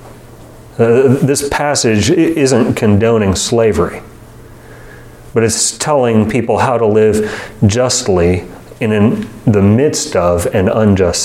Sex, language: male, English